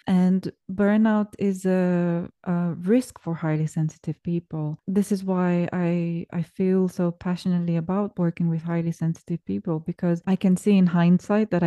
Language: English